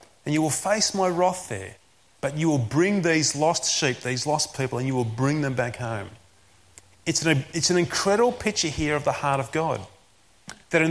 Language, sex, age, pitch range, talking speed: English, male, 30-49, 130-180 Hz, 205 wpm